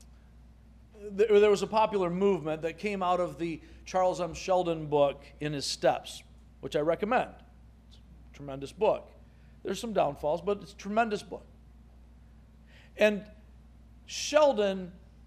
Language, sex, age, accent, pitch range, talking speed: English, male, 50-69, American, 130-200 Hz, 135 wpm